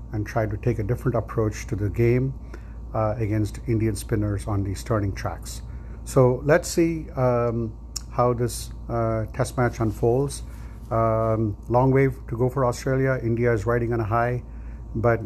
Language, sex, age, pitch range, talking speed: English, male, 50-69, 105-120 Hz, 165 wpm